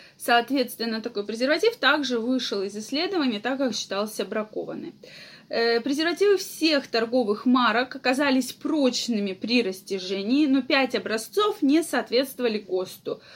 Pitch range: 225-295 Hz